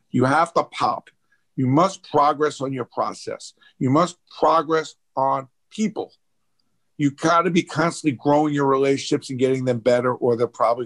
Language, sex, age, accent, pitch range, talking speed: English, male, 50-69, American, 125-155 Hz, 160 wpm